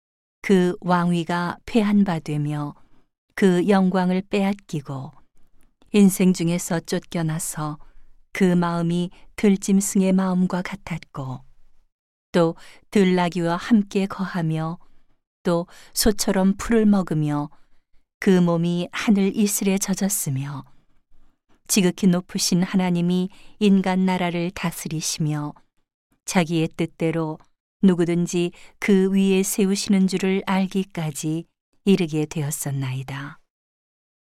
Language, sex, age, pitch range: Korean, female, 40-59, 160-190 Hz